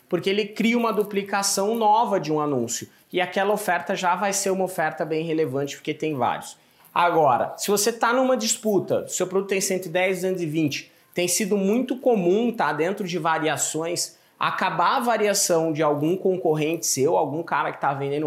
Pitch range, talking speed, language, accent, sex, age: 155-195 Hz, 175 wpm, Portuguese, Brazilian, male, 20-39